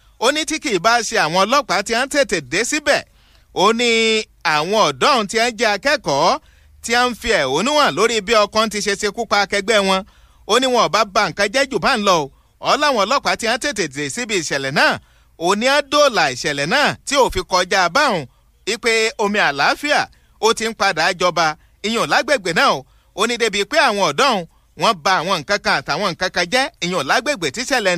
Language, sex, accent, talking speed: English, male, Nigerian, 145 wpm